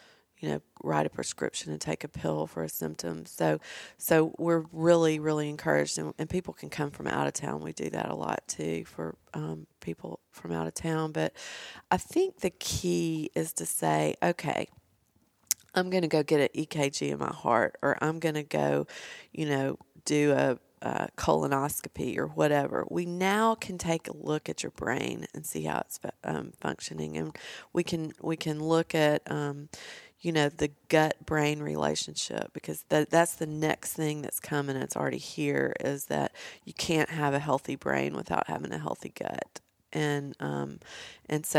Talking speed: 190 wpm